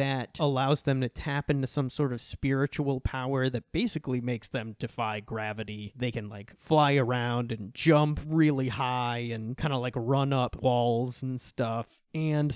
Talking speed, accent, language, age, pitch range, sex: 170 wpm, American, English, 20-39, 120-150 Hz, male